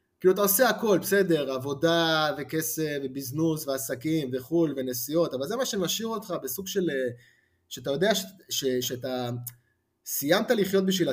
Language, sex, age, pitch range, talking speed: Hebrew, male, 20-39, 125-170 Hz, 140 wpm